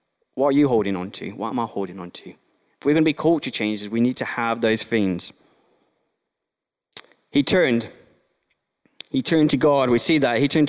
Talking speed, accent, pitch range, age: 200 wpm, British, 110-150 Hz, 20-39